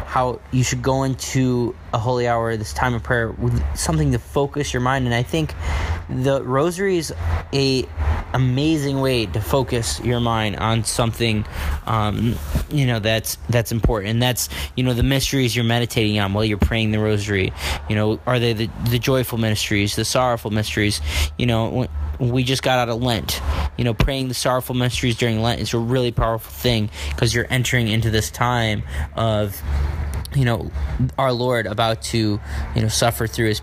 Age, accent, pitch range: 20-39, American, 105-130 Hz